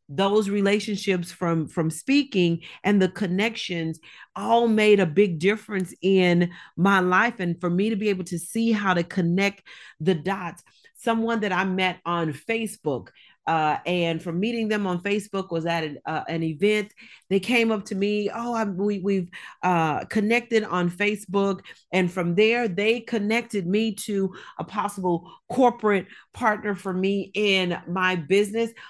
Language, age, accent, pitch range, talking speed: English, 40-59, American, 175-215 Hz, 155 wpm